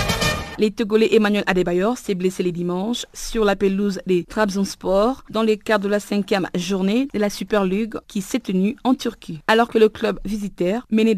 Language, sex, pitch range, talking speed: French, female, 185-225 Hz, 180 wpm